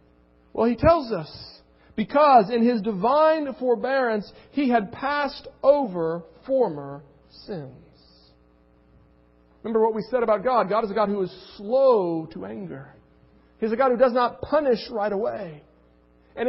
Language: English